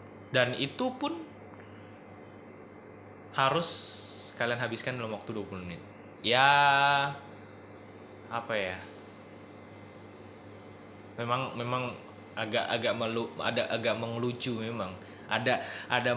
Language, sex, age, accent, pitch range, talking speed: Indonesian, male, 20-39, native, 100-115 Hz, 90 wpm